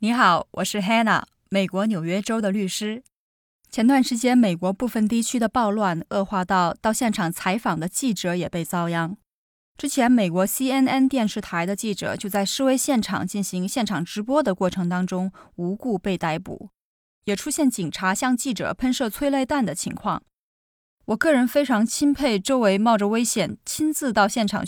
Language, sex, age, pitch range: Chinese, female, 20-39, 190-255 Hz